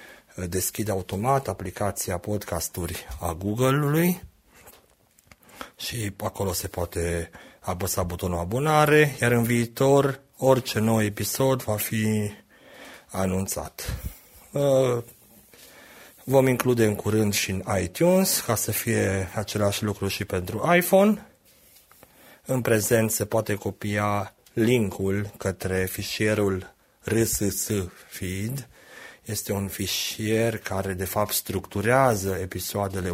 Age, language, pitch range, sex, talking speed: 30-49, Romanian, 95-120 Hz, male, 100 wpm